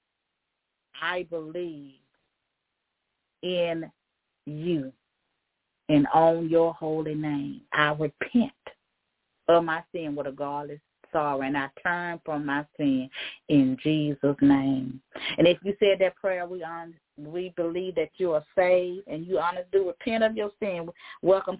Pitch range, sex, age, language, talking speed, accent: 160-190 Hz, female, 30-49, English, 140 wpm, American